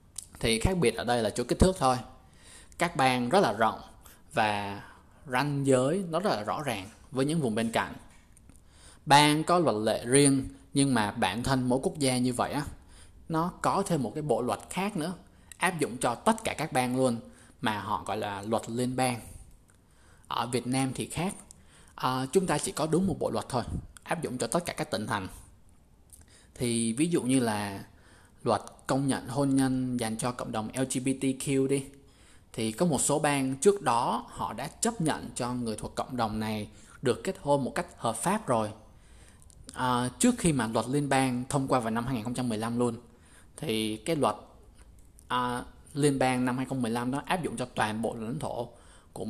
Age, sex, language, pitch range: 20-39, male, Vietnamese, 105-135 Hz